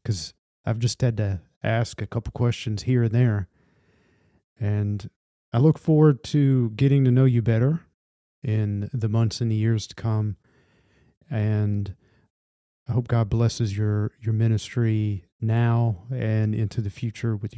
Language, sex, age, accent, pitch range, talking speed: English, male, 40-59, American, 100-120 Hz, 150 wpm